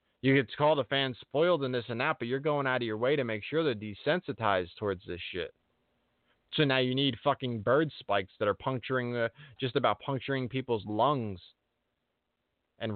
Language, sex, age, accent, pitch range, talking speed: English, male, 20-39, American, 110-145 Hz, 200 wpm